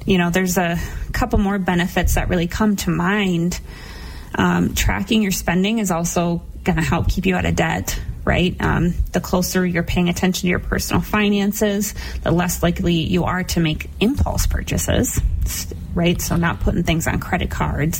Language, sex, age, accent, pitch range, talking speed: English, female, 30-49, American, 170-205 Hz, 175 wpm